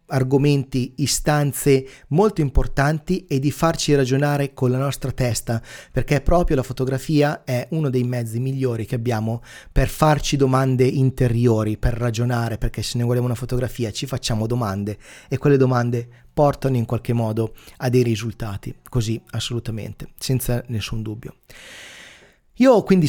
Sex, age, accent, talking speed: male, 30-49, native, 145 wpm